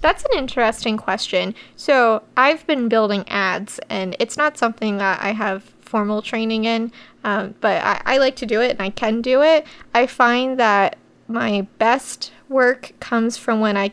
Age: 20-39